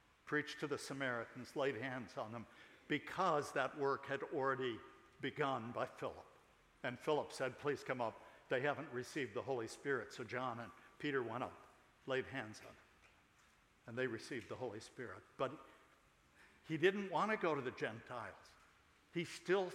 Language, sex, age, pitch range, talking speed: English, male, 60-79, 125-150 Hz, 165 wpm